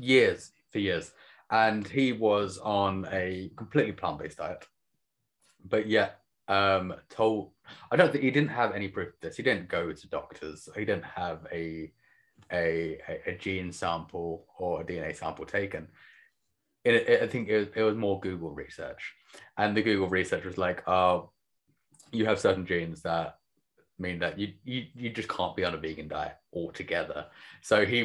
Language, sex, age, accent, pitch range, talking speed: English, male, 20-39, British, 90-110 Hz, 165 wpm